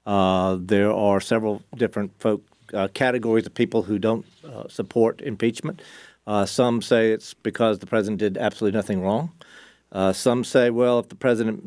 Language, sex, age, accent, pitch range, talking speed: English, male, 50-69, American, 105-120 Hz, 170 wpm